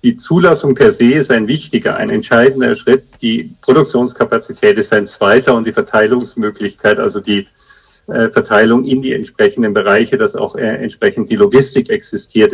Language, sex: German, male